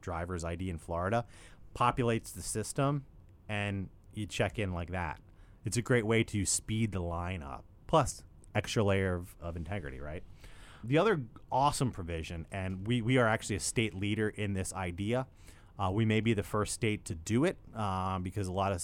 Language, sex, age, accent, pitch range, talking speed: English, male, 30-49, American, 90-120 Hz, 190 wpm